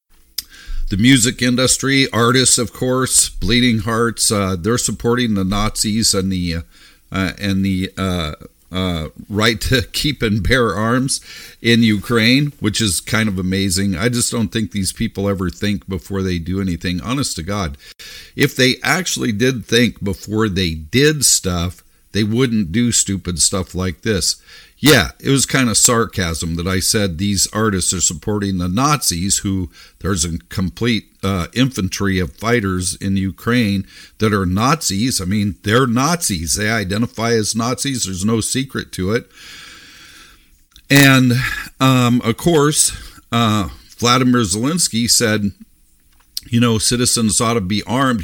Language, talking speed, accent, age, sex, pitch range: English, 150 wpm, American, 50-69, male, 95-120 Hz